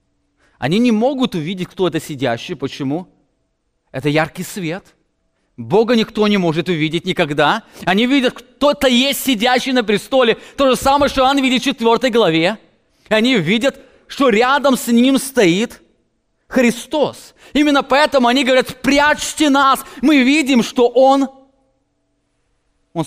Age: 30-49